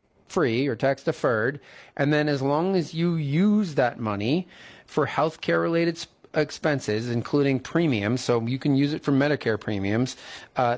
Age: 30-49